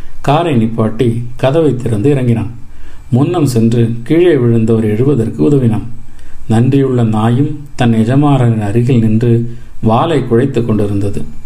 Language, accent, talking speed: Tamil, native, 110 wpm